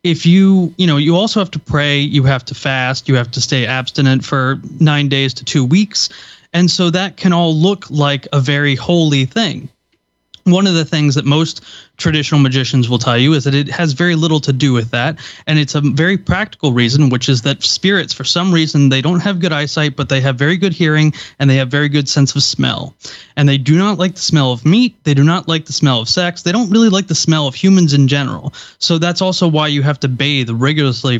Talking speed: 240 wpm